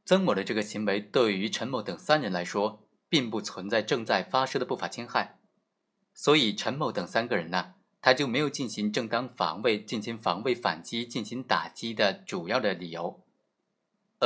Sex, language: male, Chinese